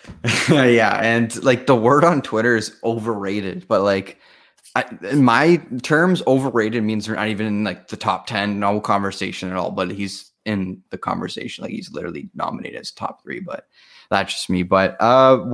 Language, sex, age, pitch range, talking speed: English, male, 20-39, 95-110 Hz, 180 wpm